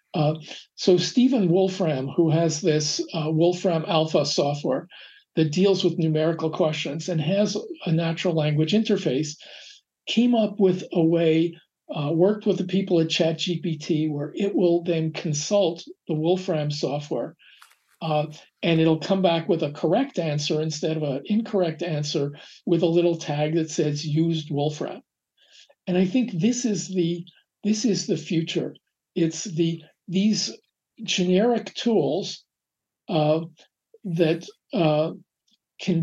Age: 50-69